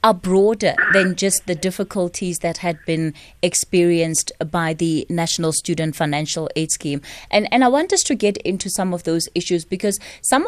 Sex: female